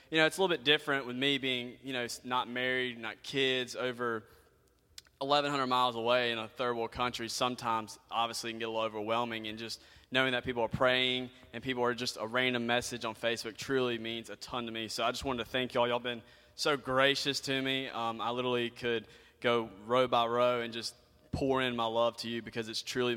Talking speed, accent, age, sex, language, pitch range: 225 wpm, American, 20-39, male, English, 115-130 Hz